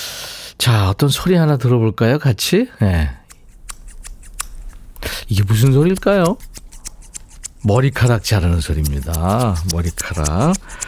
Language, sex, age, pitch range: Korean, male, 50-69, 105-160 Hz